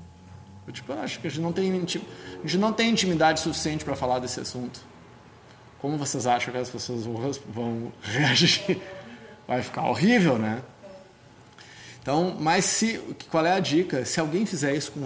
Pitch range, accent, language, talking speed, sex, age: 120-160 Hz, Brazilian, Portuguese, 165 wpm, male, 20-39